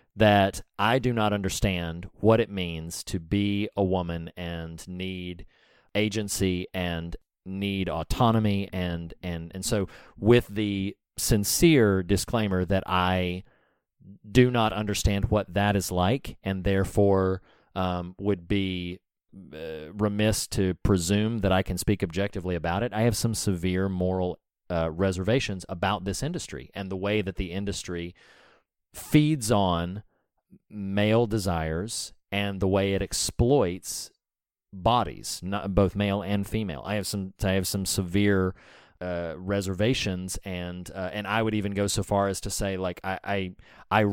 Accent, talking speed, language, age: American, 145 wpm, English, 30-49